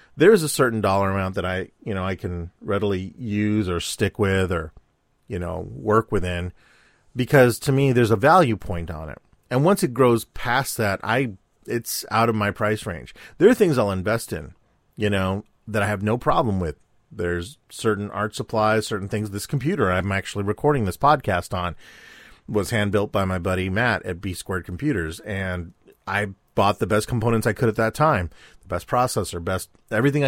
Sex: male